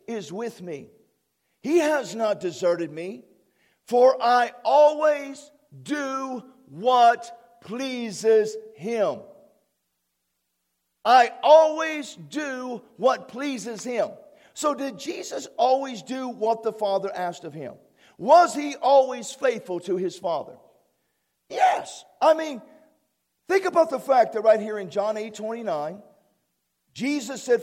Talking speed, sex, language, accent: 120 wpm, male, English, American